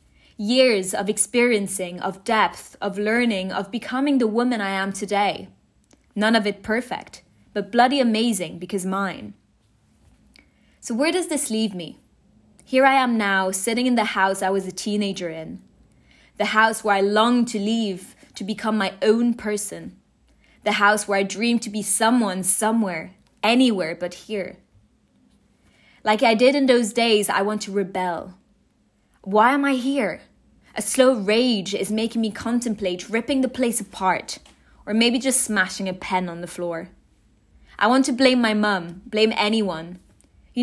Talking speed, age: 160 wpm, 20-39